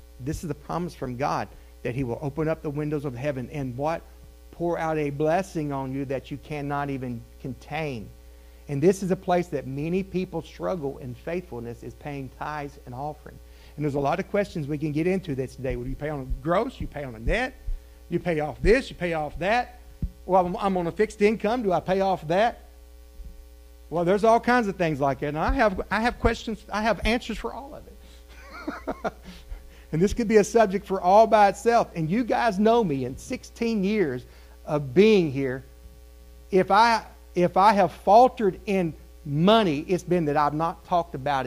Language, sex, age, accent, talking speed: English, male, 50-69, American, 210 wpm